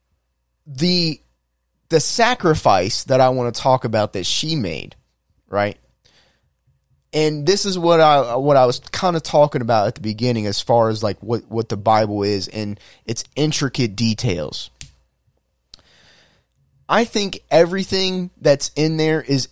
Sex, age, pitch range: male, 20-39, 110-145 Hz